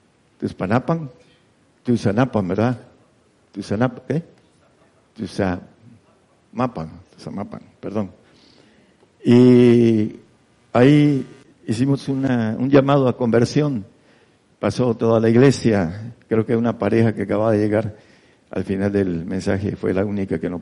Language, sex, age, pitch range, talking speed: Spanish, male, 60-79, 100-120 Hz, 115 wpm